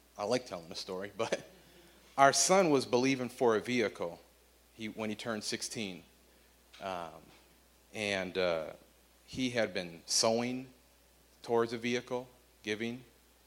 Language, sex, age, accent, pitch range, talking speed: English, male, 30-49, American, 95-120 Hz, 130 wpm